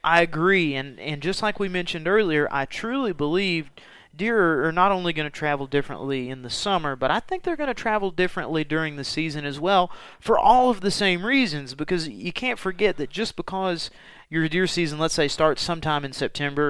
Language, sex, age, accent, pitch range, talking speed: English, male, 30-49, American, 145-185 Hz, 210 wpm